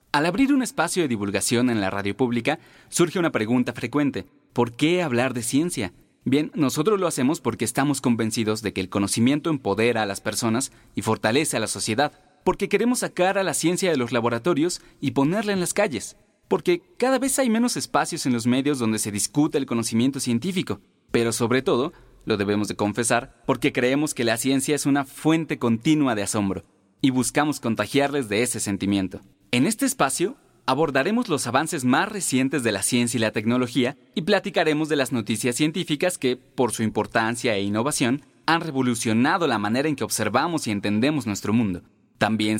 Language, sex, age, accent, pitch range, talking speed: Spanish, male, 30-49, Mexican, 115-155 Hz, 185 wpm